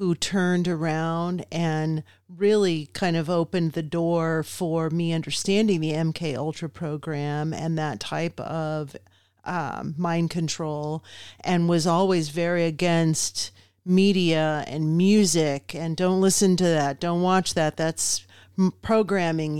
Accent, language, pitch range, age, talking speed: American, English, 160-190 Hz, 40-59, 130 wpm